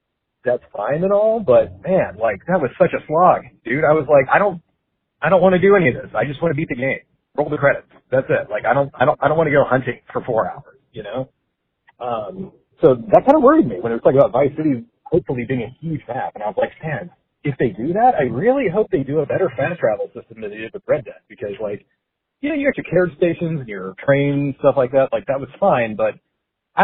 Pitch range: 125-185 Hz